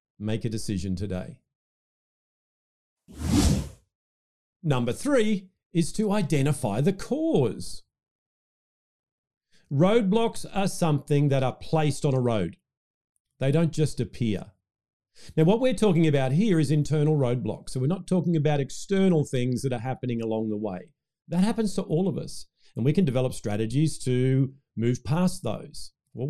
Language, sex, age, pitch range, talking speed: English, male, 40-59, 110-160 Hz, 140 wpm